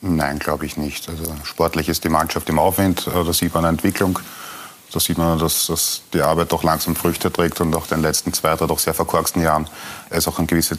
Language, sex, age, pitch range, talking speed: German, male, 30-49, 80-90 Hz, 230 wpm